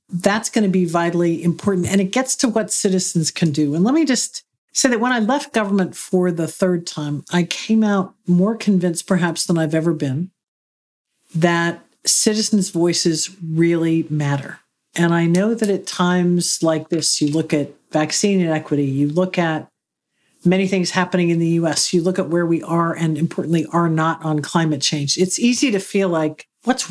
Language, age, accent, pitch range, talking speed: English, 50-69, American, 160-195 Hz, 185 wpm